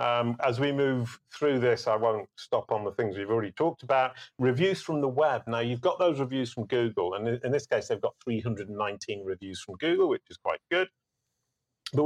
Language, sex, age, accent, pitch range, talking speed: English, male, 40-59, British, 120-155 Hz, 210 wpm